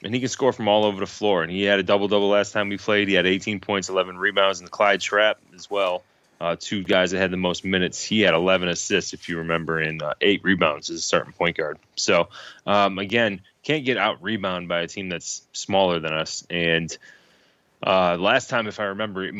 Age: 20-39